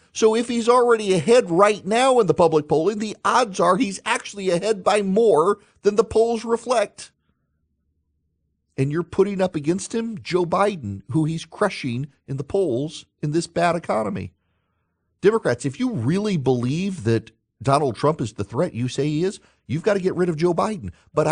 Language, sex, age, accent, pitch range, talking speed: English, male, 40-59, American, 125-185 Hz, 185 wpm